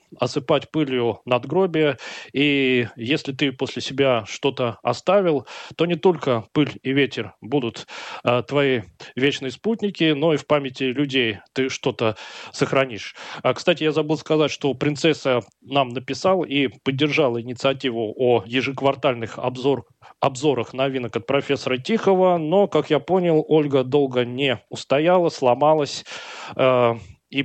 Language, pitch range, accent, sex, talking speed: Russian, 125-150 Hz, native, male, 135 wpm